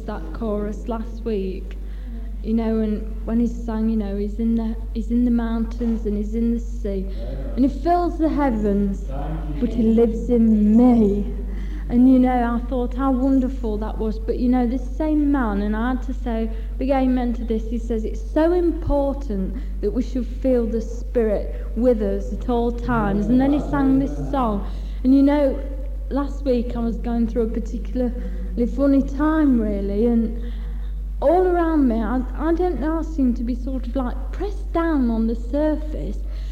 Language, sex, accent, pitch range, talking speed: English, female, British, 225-285 Hz, 185 wpm